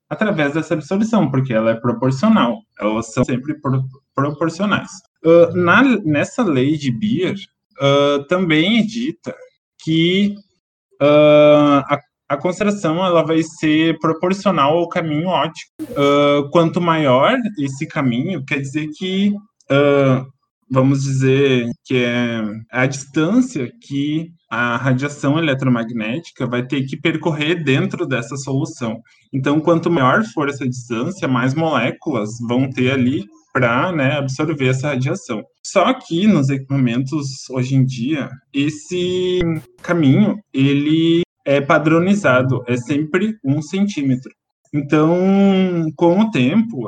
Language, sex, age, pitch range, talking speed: Portuguese, male, 20-39, 130-175 Hz, 120 wpm